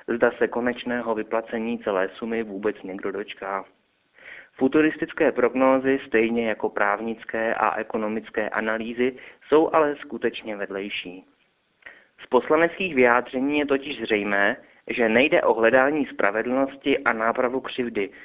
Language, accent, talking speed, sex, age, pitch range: Czech, native, 115 wpm, male, 30-49, 115-145 Hz